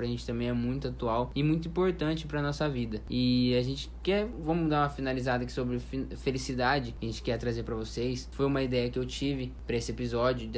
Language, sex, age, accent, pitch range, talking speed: Portuguese, male, 20-39, Brazilian, 125-145 Hz, 235 wpm